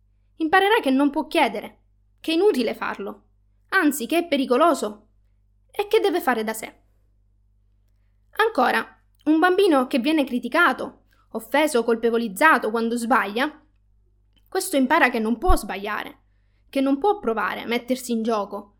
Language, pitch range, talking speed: Italian, 210-295 Hz, 135 wpm